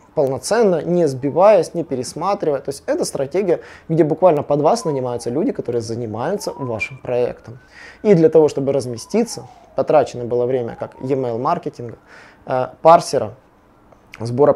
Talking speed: 135 wpm